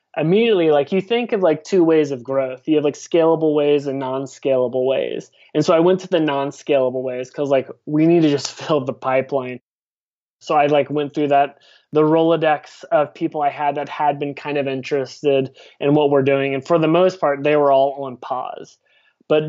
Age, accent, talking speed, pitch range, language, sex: 20-39, American, 210 wpm, 135-160 Hz, English, male